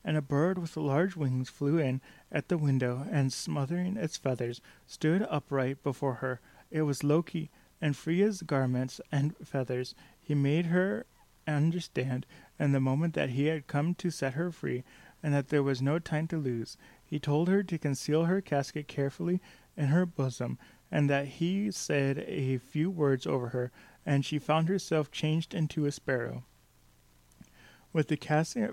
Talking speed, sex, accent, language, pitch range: 170 wpm, male, American, English, 135-160 Hz